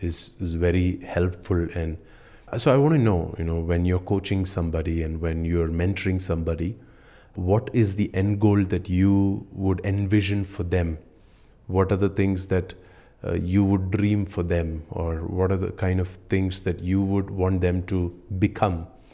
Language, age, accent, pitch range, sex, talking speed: English, 30-49, Indian, 90-105 Hz, male, 175 wpm